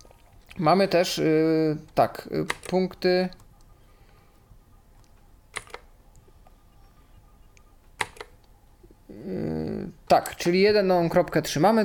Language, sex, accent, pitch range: Polish, male, native, 150-200 Hz